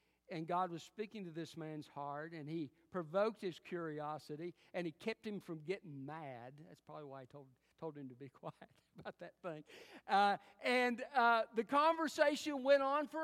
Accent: American